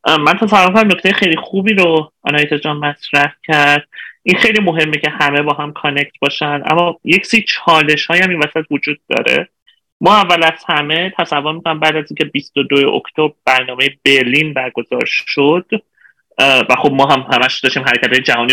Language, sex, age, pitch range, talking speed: Persian, male, 30-49, 140-180 Hz, 170 wpm